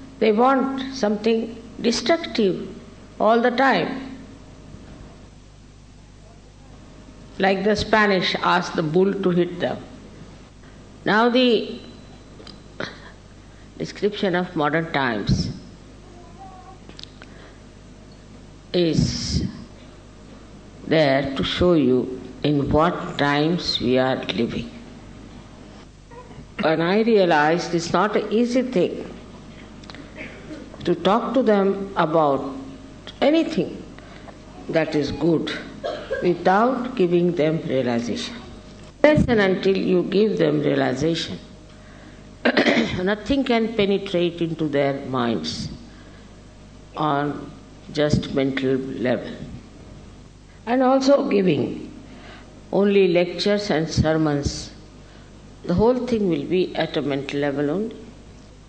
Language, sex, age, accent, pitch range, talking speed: English, female, 60-79, Indian, 145-215 Hz, 90 wpm